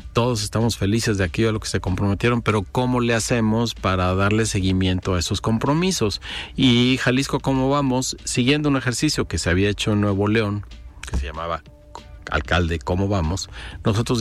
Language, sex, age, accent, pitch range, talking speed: Spanish, male, 50-69, Mexican, 95-125 Hz, 175 wpm